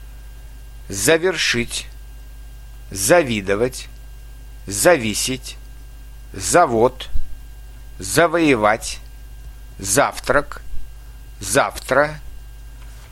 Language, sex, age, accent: Russian, male, 50-69, native